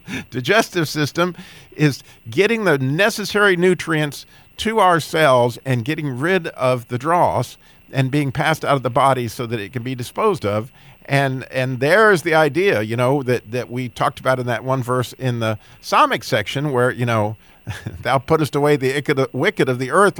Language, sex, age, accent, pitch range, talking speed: English, male, 50-69, American, 125-160 Hz, 185 wpm